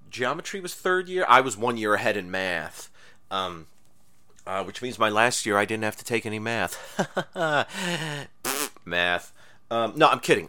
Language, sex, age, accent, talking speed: English, male, 30-49, American, 175 wpm